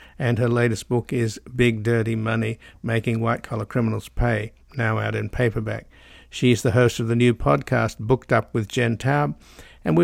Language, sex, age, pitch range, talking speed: English, male, 60-79, 115-130 Hz, 185 wpm